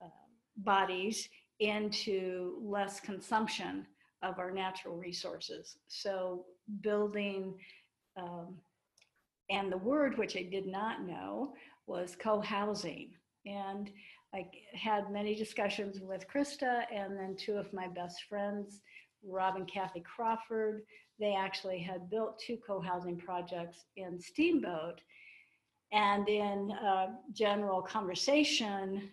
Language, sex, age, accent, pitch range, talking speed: English, female, 50-69, American, 190-245 Hz, 110 wpm